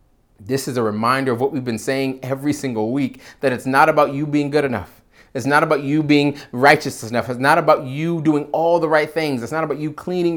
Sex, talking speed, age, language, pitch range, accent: male, 235 wpm, 30-49, English, 115-155 Hz, American